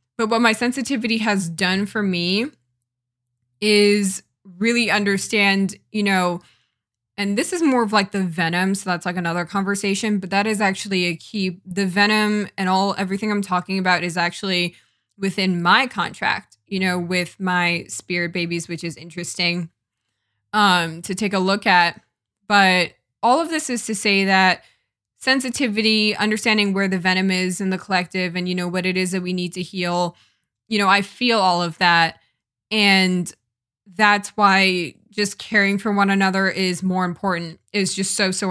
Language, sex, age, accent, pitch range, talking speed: English, female, 20-39, American, 175-205 Hz, 170 wpm